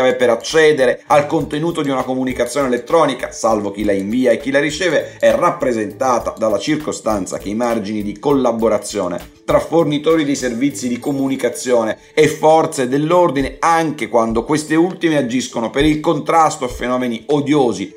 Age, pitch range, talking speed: 40-59, 125-160 Hz, 150 wpm